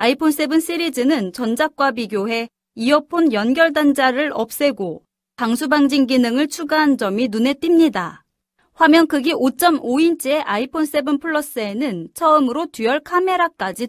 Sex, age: female, 30-49